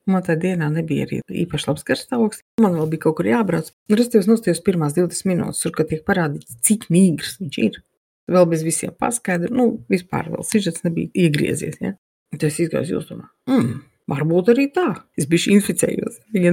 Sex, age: female, 50-69